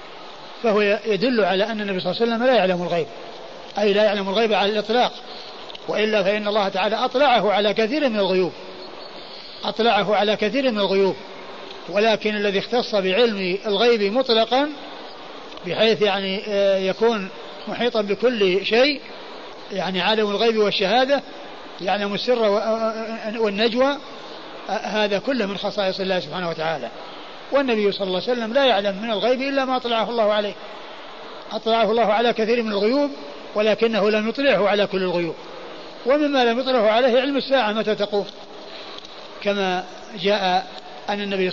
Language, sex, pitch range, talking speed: Arabic, male, 195-230 Hz, 140 wpm